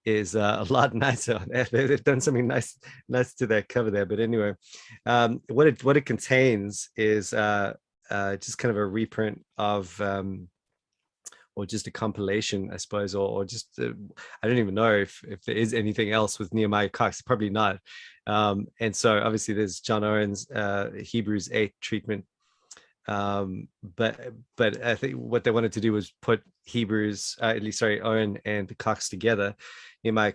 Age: 30-49